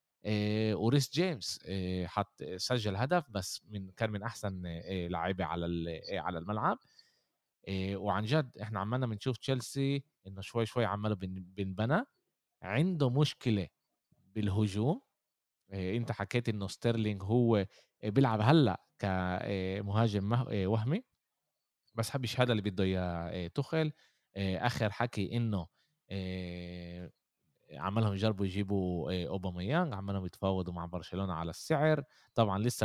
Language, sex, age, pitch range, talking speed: Arabic, male, 20-39, 95-120 Hz, 110 wpm